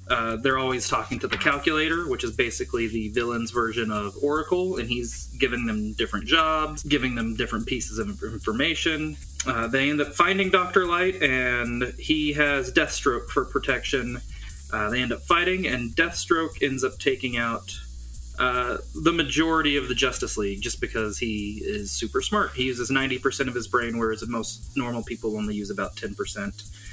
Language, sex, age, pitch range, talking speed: English, male, 20-39, 110-145 Hz, 175 wpm